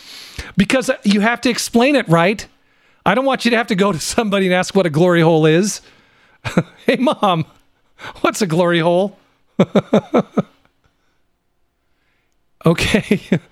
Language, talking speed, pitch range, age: English, 140 wpm, 140-195 Hz, 40-59